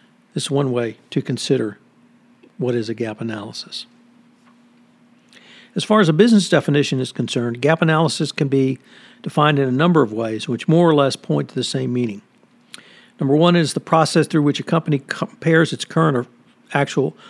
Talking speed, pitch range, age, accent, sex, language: 180 wpm, 130-190 Hz, 60-79, American, male, English